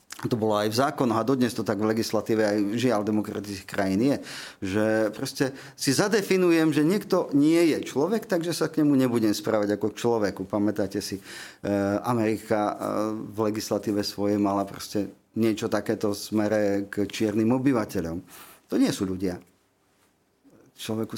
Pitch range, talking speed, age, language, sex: 100-130 Hz, 140 wpm, 40-59, Slovak, male